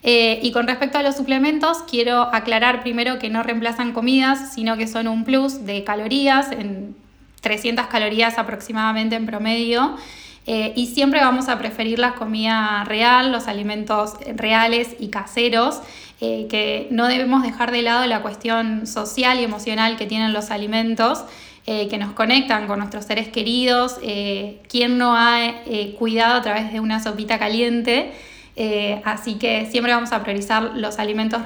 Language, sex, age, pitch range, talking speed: Spanish, female, 10-29, 215-240 Hz, 165 wpm